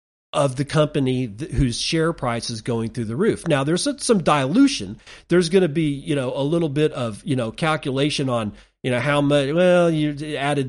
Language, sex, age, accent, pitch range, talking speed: English, male, 40-59, American, 125-165 Hz, 200 wpm